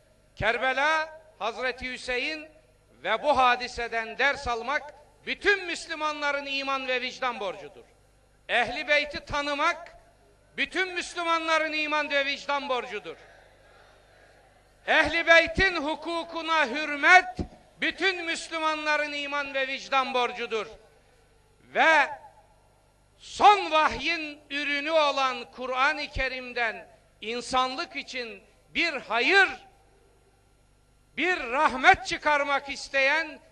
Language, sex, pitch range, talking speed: Turkish, male, 260-325 Hz, 85 wpm